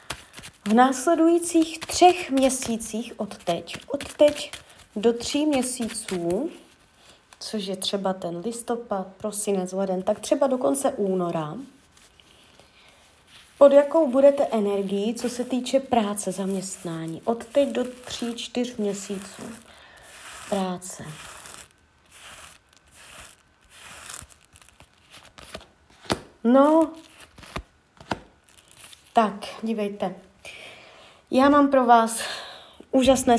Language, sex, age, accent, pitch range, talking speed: Czech, female, 30-49, native, 205-270 Hz, 85 wpm